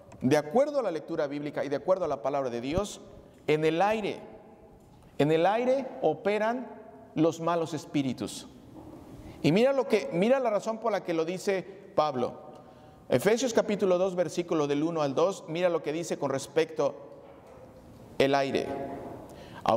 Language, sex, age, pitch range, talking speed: Spanish, male, 40-59, 150-200 Hz, 165 wpm